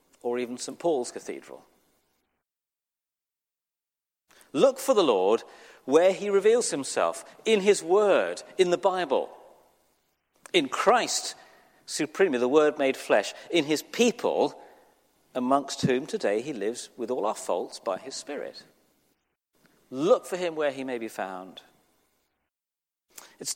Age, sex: 40-59, male